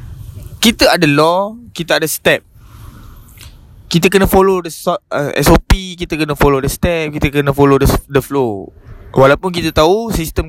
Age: 20-39